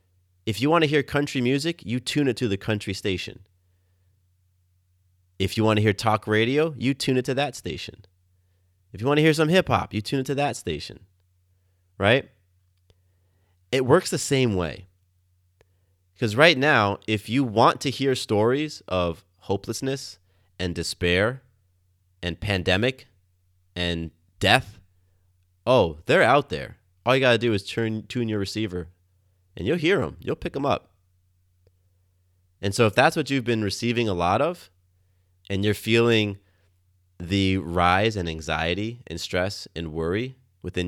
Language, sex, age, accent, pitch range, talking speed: English, male, 30-49, American, 90-115 Hz, 160 wpm